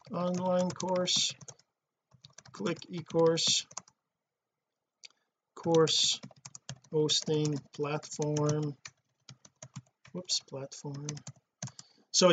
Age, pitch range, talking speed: 40-59, 150-200 Hz, 50 wpm